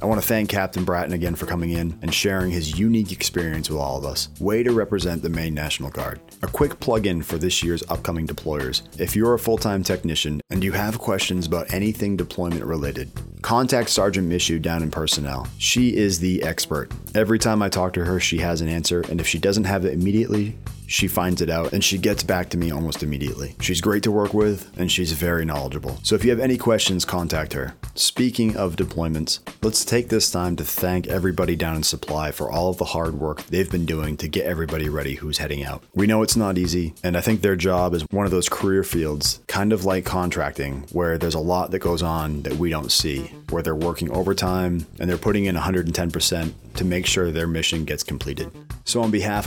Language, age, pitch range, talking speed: English, 30-49, 80-100 Hz, 225 wpm